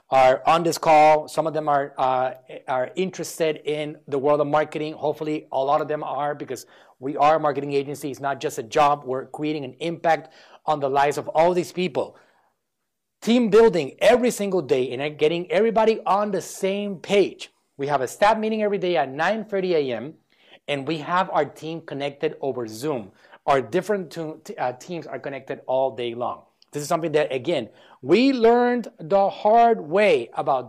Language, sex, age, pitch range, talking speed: English, male, 30-49, 145-200 Hz, 180 wpm